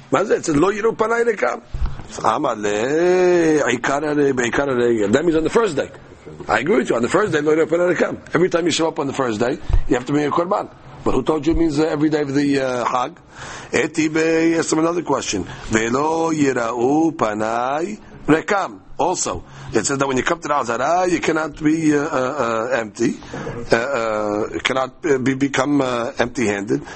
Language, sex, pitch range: English, male, 135-170 Hz